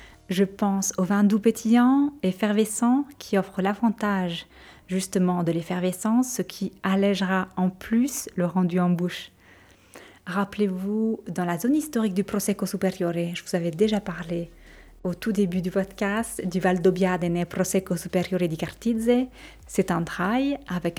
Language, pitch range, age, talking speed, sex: French, 180-215 Hz, 30-49, 145 wpm, female